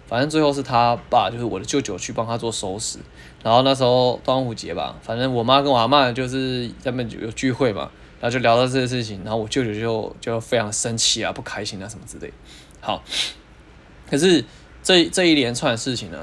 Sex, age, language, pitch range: male, 20-39, Chinese, 115-135 Hz